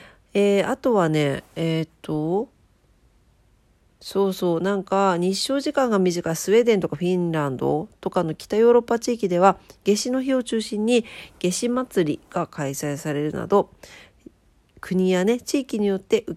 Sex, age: female, 40-59